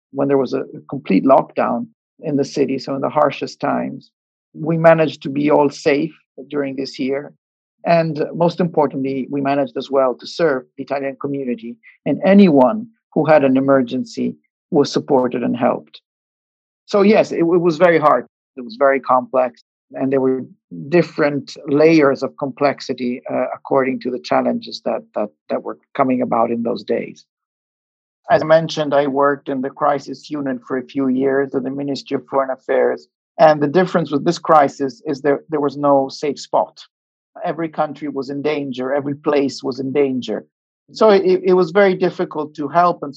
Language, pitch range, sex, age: English, 135-155 Hz, male, 50-69